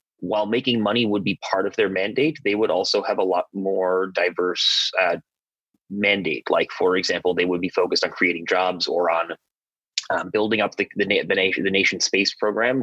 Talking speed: 195 wpm